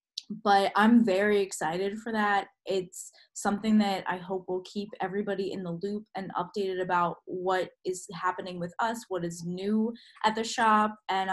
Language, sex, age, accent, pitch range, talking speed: English, female, 10-29, American, 180-220 Hz, 170 wpm